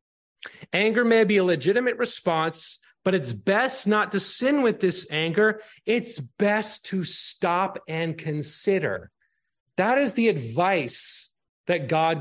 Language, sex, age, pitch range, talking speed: English, male, 30-49, 155-205 Hz, 135 wpm